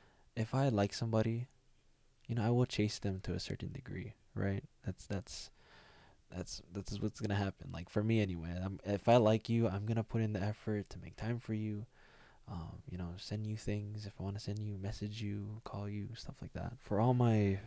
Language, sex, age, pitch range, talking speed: English, male, 20-39, 95-115 Hz, 225 wpm